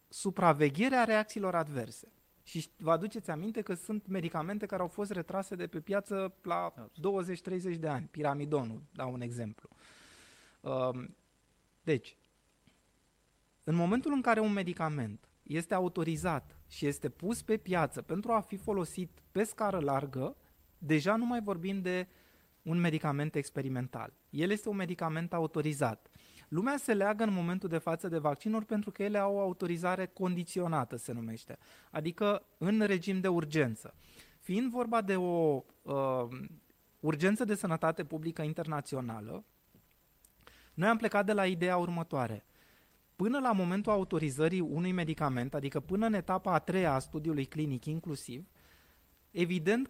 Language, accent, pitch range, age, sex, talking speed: Romanian, native, 150-205 Hz, 20-39, male, 140 wpm